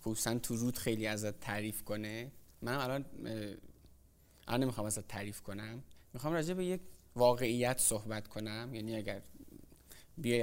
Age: 20-39